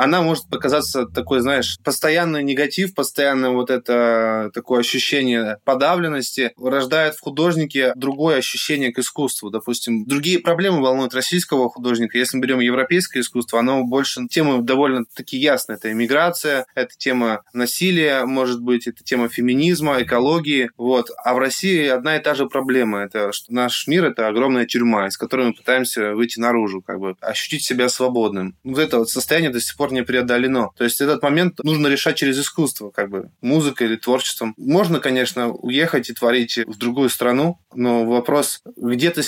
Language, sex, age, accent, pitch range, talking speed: Russian, male, 20-39, native, 120-150 Hz, 165 wpm